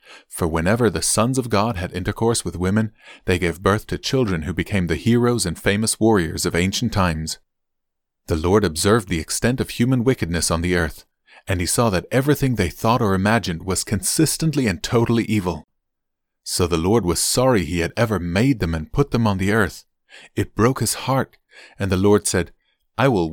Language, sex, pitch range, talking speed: English, male, 90-120 Hz, 195 wpm